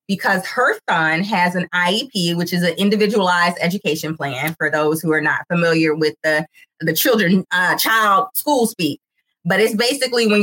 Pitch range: 175-220 Hz